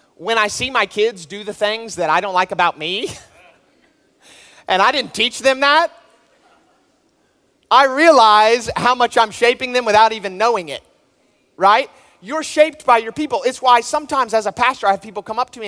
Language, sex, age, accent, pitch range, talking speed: English, male, 30-49, American, 180-230 Hz, 190 wpm